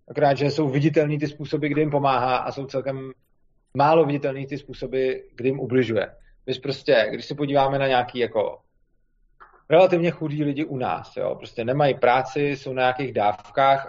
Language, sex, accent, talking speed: Czech, male, native, 175 wpm